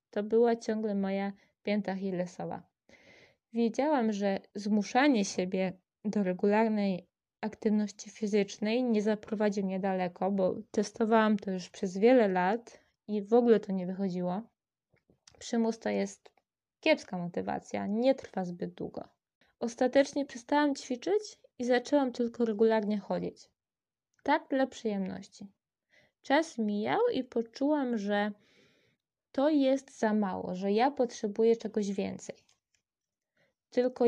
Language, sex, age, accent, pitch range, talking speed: Polish, female, 20-39, native, 205-235 Hz, 115 wpm